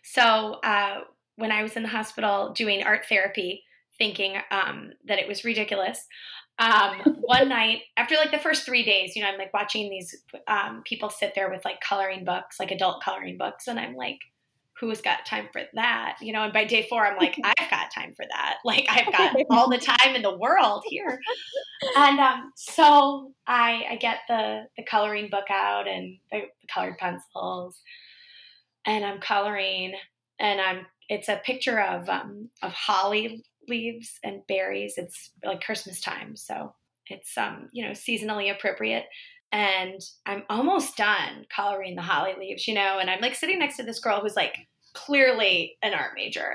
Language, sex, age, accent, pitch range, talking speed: English, female, 20-39, American, 195-250 Hz, 180 wpm